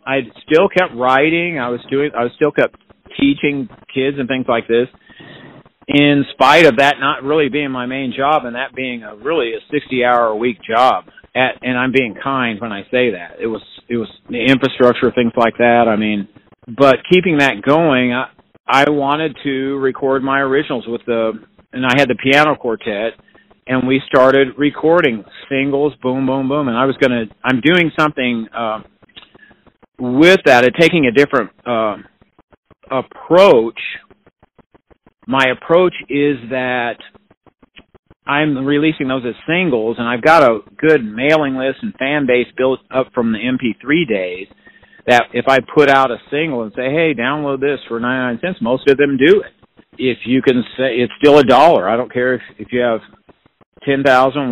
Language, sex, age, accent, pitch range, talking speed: English, male, 50-69, American, 120-145 Hz, 175 wpm